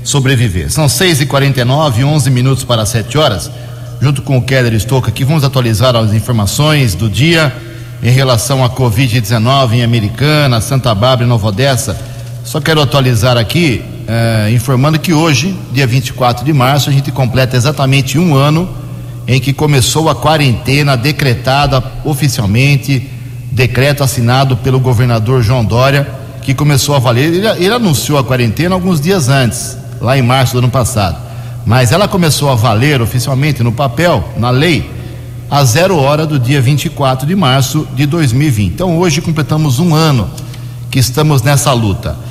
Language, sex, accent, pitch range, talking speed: Portuguese, male, Brazilian, 120-145 Hz, 155 wpm